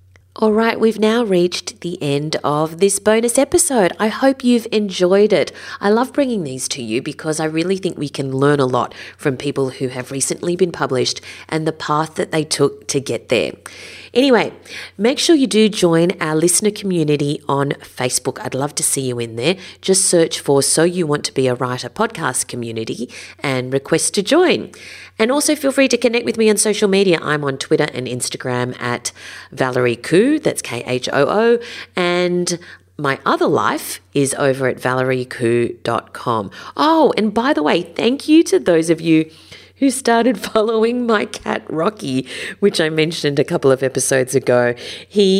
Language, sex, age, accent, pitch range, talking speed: English, female, 30-49, Australian, 135-210 Hz, 180 wpm